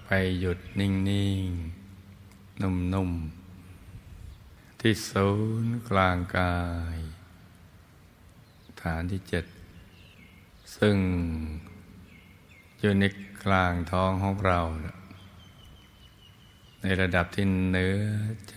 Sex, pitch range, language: male, 90-105 Hz, Thai